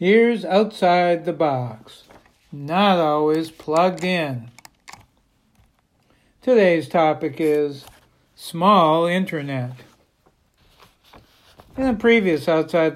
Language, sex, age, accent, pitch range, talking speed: English, male, 60-79, American, 150-190 Hz, 80 wpm